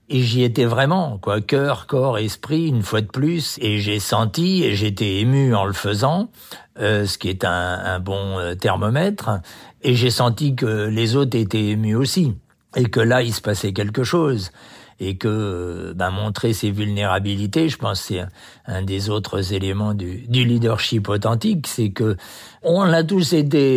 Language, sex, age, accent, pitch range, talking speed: French, male, 60-79, French, 100-135 Hz, 185 wpm